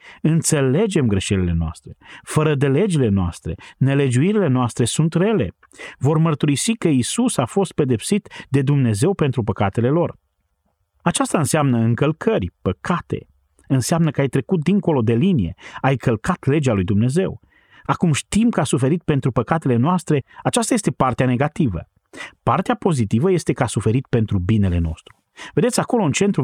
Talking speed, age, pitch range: 145 wpm, 40-59, 115-170 Hz